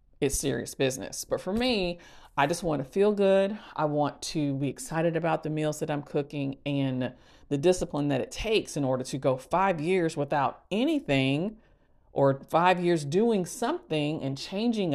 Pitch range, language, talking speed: 150-210 Hz, English, 175 wpm